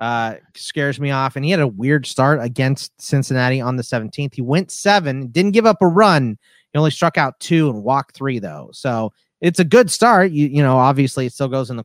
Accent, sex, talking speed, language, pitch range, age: American, male, 235 wpm, English, 115-145 Hz, 30-49